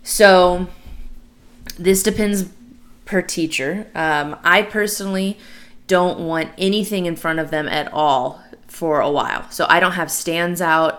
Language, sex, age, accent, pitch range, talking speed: English, female, 20-39, American, 150-185 Hz, 140 wpm